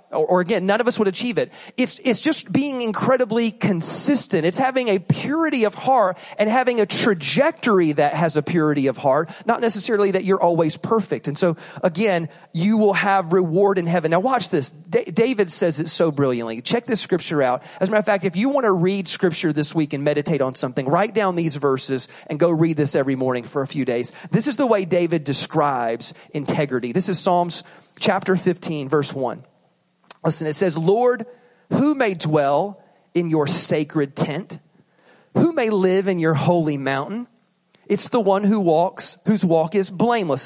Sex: male